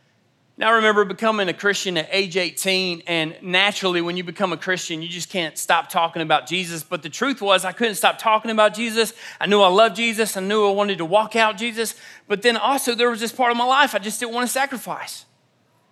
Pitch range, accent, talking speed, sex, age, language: 185-270 Hz, American, 235 wpm, male, 30-49, English